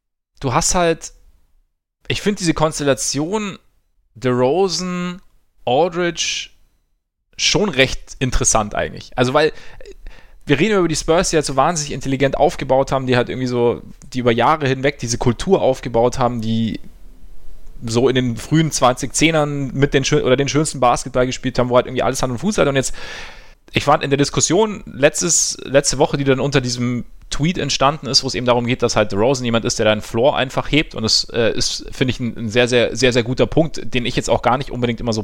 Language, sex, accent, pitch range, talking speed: German, male, German, 120-155 Hz, 200 wpm